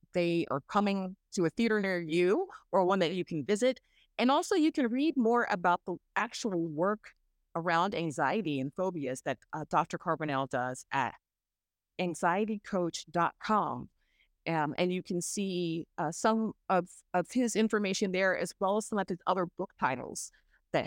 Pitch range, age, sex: 150-200 Hz, 30-49, female